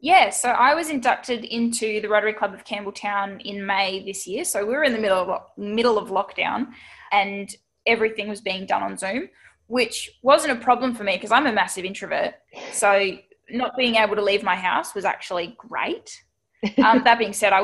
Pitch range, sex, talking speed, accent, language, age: 200-235 Hz, female, 205 wpm, Australian, English, 10-29